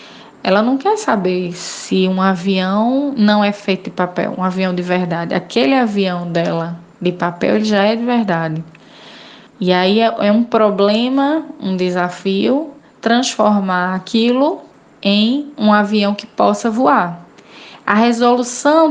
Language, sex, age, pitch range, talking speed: Portuguese, female, 10-29, 185-235 Hz, 135 wpm